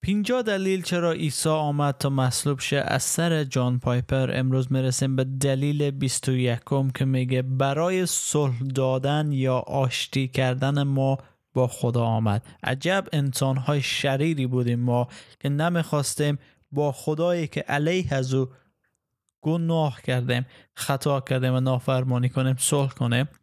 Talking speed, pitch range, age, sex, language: 135 wpm, 130-155 Hz, 20-39, male, Persian